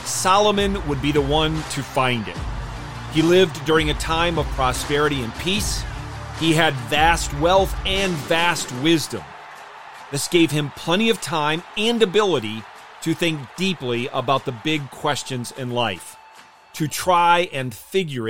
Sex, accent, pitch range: male, American, 125-170 Hz